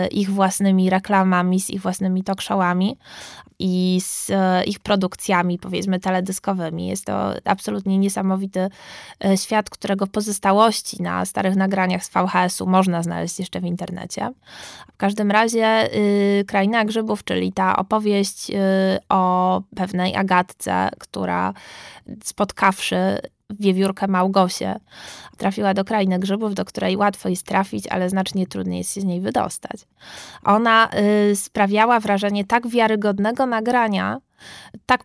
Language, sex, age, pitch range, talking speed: Polish, female, 20-39, 185-205 Hz, 120 wpm